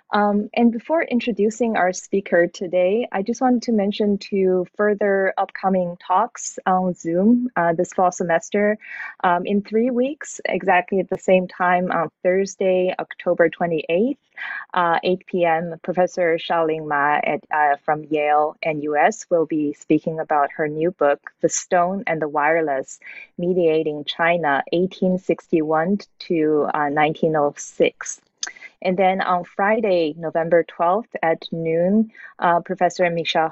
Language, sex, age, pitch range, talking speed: English, female, 20-39, 155-195 Hz, 135 wpm